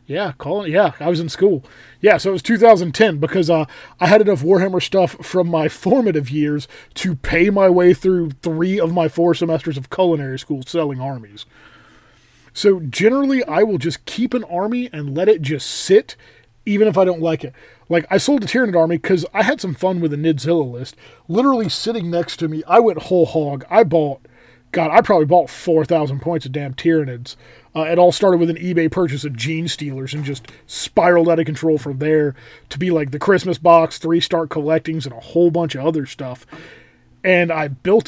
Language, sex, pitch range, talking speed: English, male, 150-200 Hz, 205 wpm